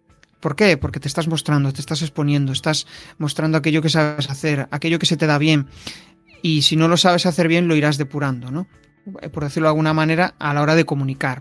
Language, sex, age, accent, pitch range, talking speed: Spanish, male, 30-49, Spanish, 145-165 Hz, 220 wpm